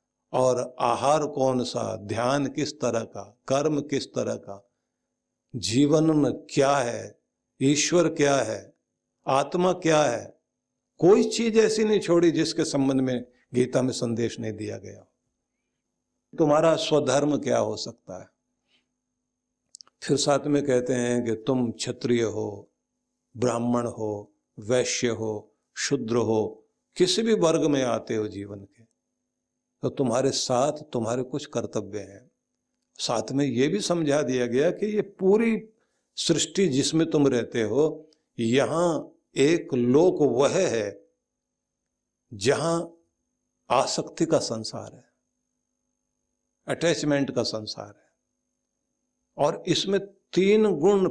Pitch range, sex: 115-155 Hz, male